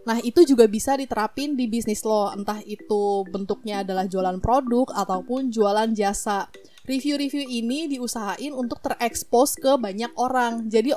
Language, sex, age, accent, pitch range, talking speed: Indonesian, female, 20-39, native, 220-260 Hz, 140 wpm